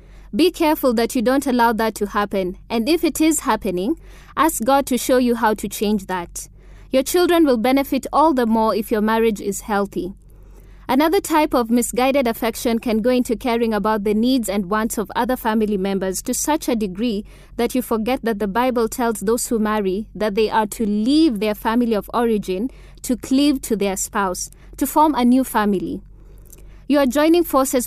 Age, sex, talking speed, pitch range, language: 20-39, female, 195 wpm, 205-255 Hz, English